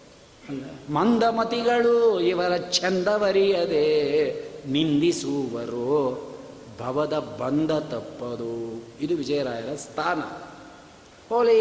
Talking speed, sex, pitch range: 55 wpm, male, 140-195 Hz